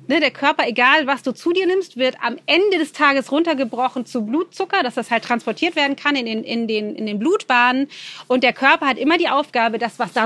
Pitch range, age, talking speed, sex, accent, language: 225-280 Hz, 30-49, 210 wpm, female, German, German